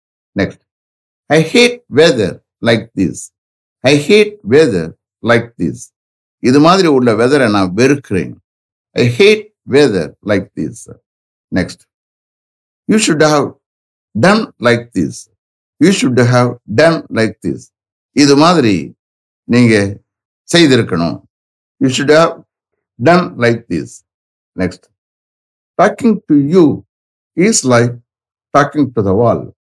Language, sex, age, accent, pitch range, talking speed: English, male, 60-79, Indian, 95-145 Hz, 90 wpm